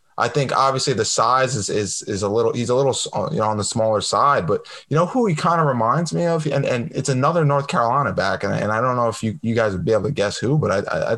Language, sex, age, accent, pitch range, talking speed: English, male, 20-39, American, 105-130 Hz, 290 wpm